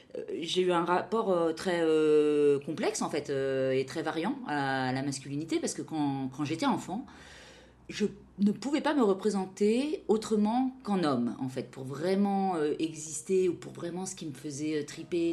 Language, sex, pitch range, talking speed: Arabic, female, 135-180 Hz, 185 wpm